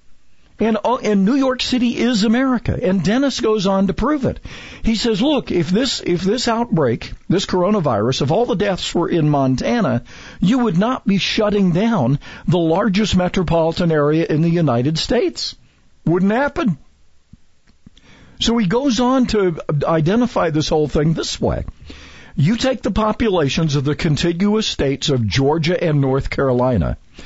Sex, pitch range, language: male, 140-210 Hz, English